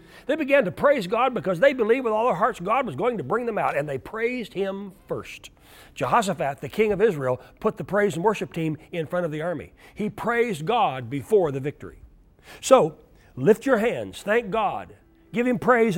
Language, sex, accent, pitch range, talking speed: English, male, American, 165-225 Hz, 205 wpm